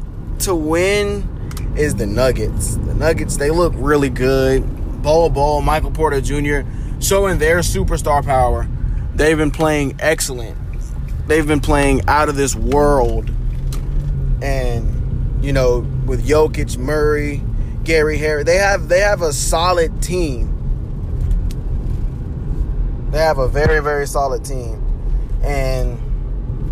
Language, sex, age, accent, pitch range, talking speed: English, male, 20-39, American, 120-150 Hz, 120 wpm